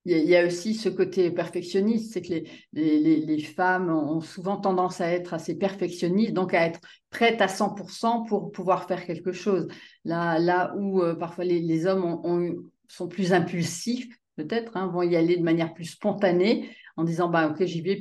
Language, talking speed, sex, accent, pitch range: French, 195 wpm, female, French, 180-220 Hz